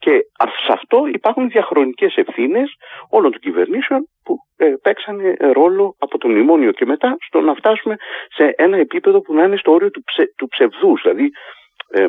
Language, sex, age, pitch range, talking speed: Greek, male, 50-69, 265-400 Hz, 175 wpm